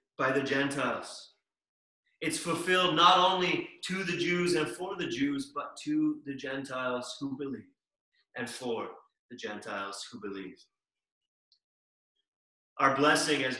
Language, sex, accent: English, male, American